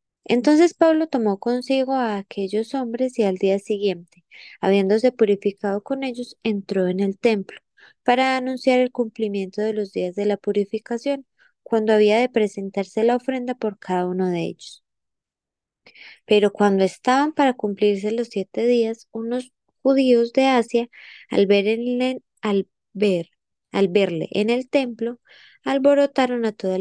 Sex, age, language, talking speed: female, 20-39, Spanish, 135 wpm